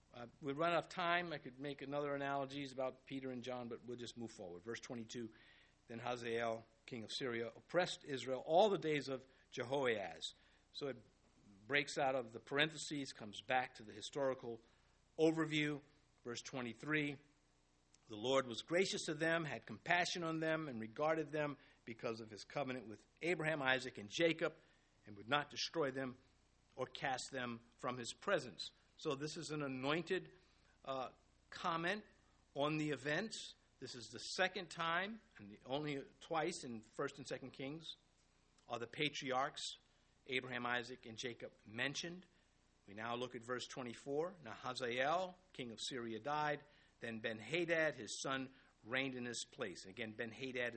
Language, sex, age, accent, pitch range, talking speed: English, male, 50-69, American, 115-150 Hz, 160 wpm